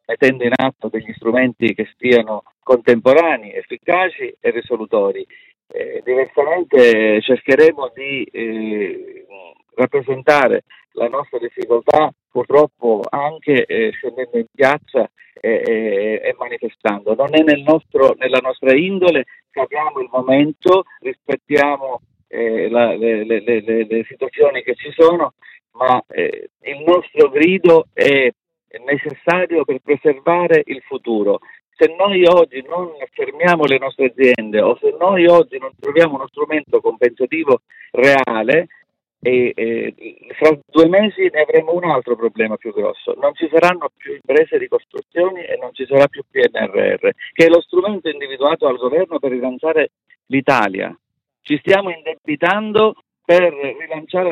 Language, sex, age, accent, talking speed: Italian, male, 50-69, native, 130 wpm